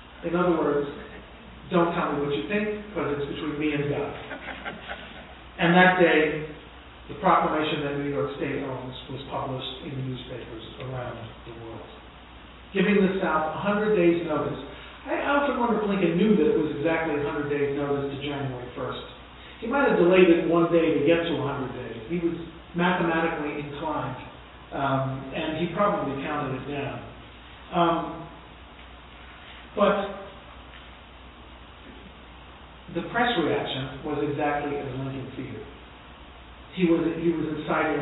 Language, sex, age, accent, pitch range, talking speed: English, male, 40-59, American, 130-170 Hz, 145 wpm